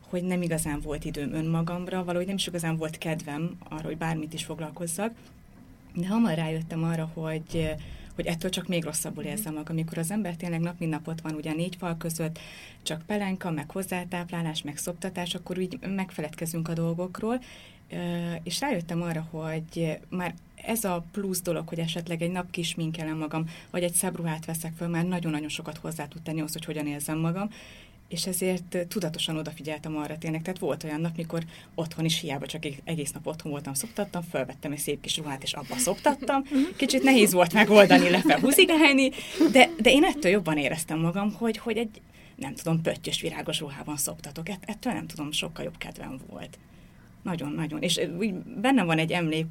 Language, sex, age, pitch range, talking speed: Hungarian, female, 30-49, 155-185 Hz, 180 wpm